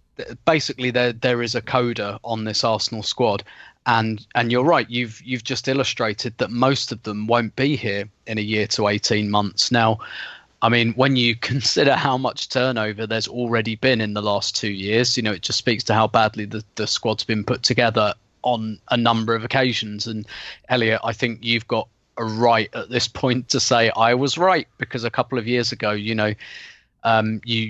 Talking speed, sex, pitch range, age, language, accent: 200 wpm, male, 110-130 Hz, 20-39, English, British